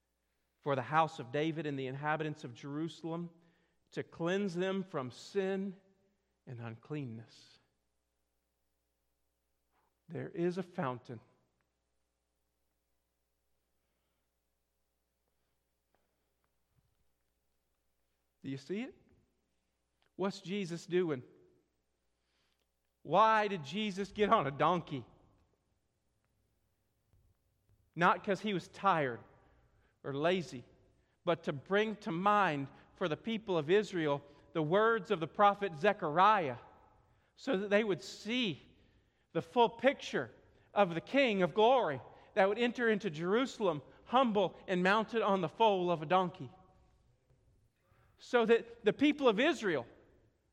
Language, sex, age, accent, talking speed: English, male, 50-69, American, 110 wpm